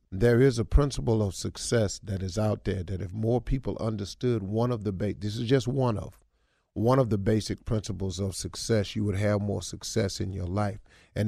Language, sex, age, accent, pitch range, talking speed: English, male, 40-59, American, 100-140 Hz, 215 wpm